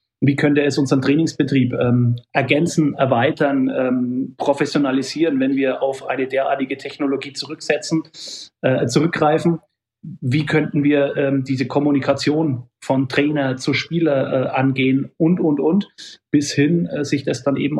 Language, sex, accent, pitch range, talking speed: German, male, German, 130-150 Hz, 135 wpm